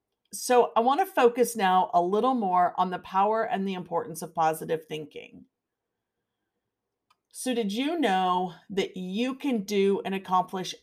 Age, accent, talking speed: 40-59, American, 155 wpm